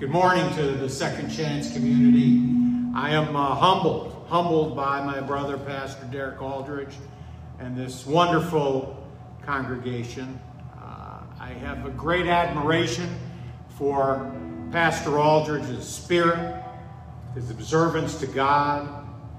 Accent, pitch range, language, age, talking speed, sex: American, 130-160 Hz, English, 50-69, 110 wpm, male